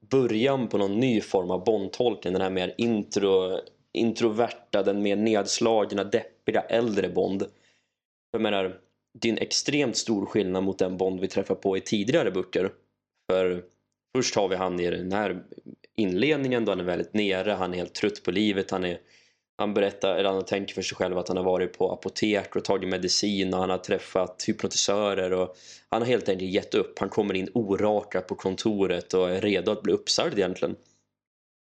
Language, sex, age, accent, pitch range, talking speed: Swedish, male, 20-39, native, 95-110 Hz, 185 wpm